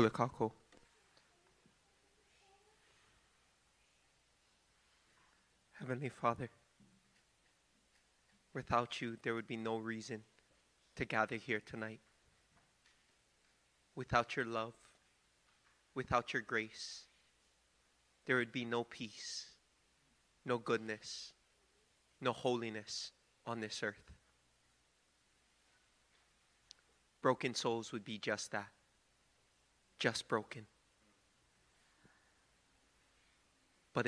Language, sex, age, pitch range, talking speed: English, male, 30-49, 105-120 Hz, 70 wpm